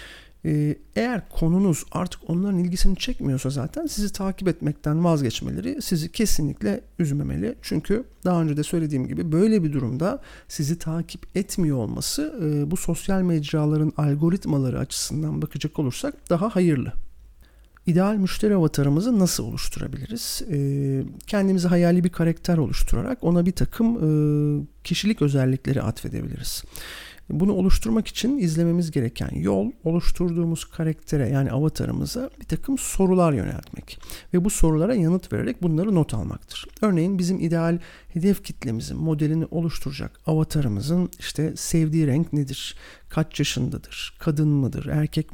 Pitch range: 145-180 Hz